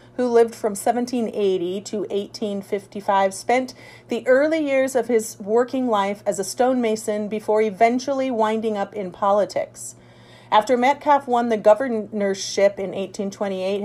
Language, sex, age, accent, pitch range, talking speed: English, female, 40-59, American, 190-230 Hz, 130 wpm